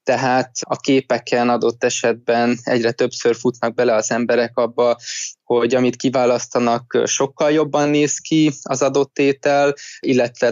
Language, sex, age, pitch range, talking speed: Hungarian, male, 20-39, 120-130 Hz, 130 wpm